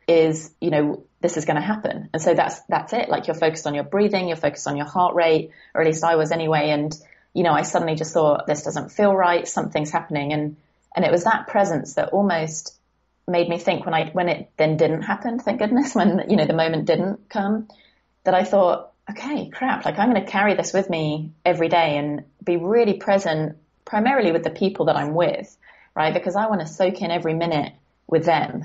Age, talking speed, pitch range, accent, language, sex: 30-49, 225 wpm, 155-195 Hz, British, English, female